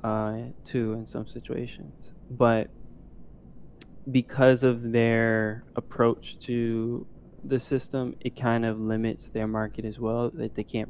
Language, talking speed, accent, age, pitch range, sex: English, 130 wpm, American, 20-39, 110-120 Hz, male